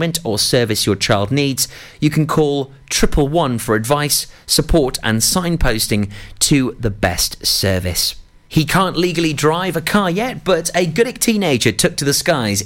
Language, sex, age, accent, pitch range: Japanese, male, 30-49, British, 110-165 Hz